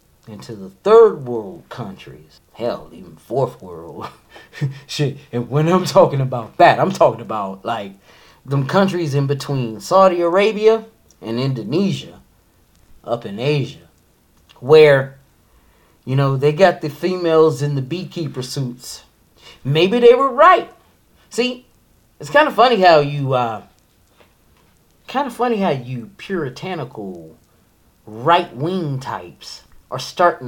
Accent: American